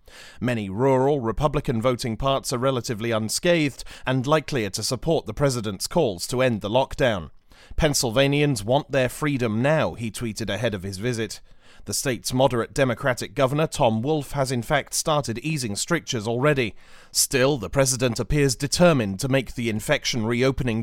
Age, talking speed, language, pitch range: 30-49, 155 wpm, English, 115-150 Hz